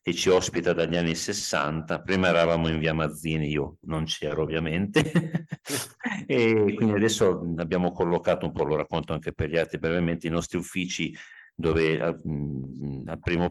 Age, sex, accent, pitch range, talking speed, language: 50-69, male, native, 80-90 Hz, 155 wpm, Italian